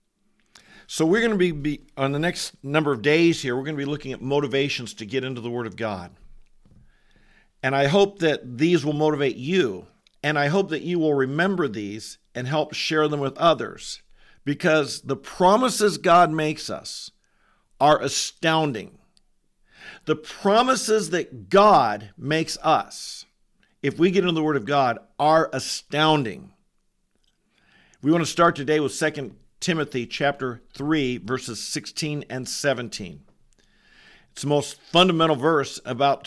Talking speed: 155 wpm